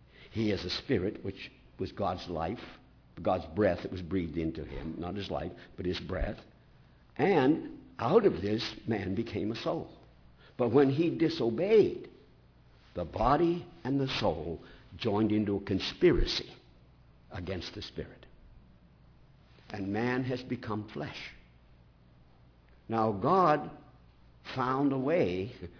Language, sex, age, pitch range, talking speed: English, male, 60-79, 80-130 Hz, 130 wpm